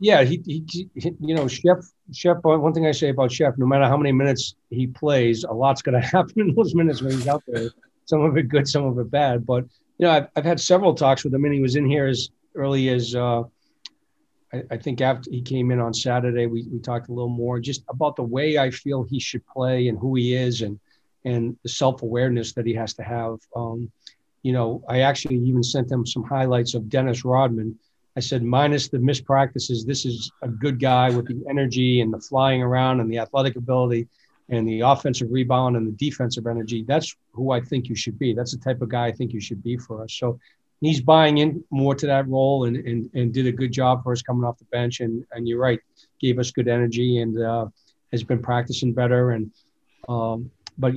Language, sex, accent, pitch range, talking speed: English, male, American, 120-140 Hz, 230 wpm